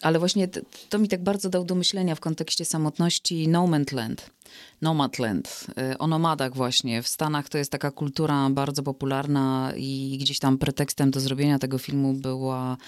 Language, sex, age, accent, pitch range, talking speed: Polish, female, 20-39, native, 140-185 Hz, 165 wpm